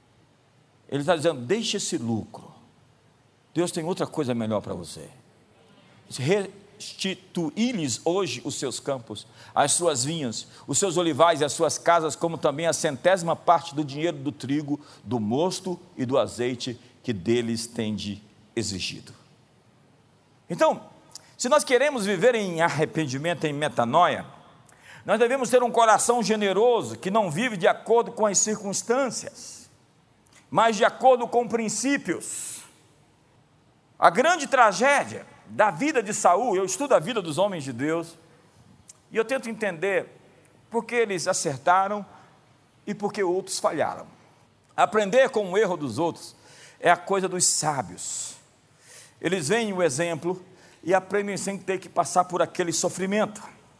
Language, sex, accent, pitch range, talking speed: Portuguese, male, Brazilian, 140-210 Hz, 140 wpm